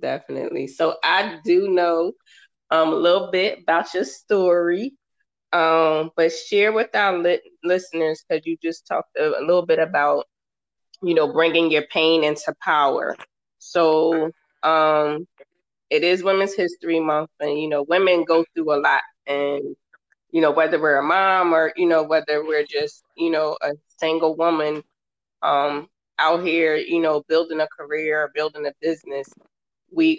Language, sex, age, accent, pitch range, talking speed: English, female, 20-39, American, 150-175 Hz, 160 wpm